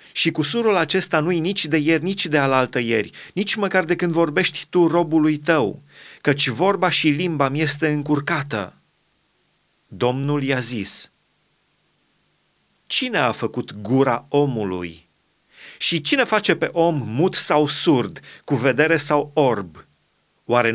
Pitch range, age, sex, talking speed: 125-170 Hz, 30-49, male, 135 wpm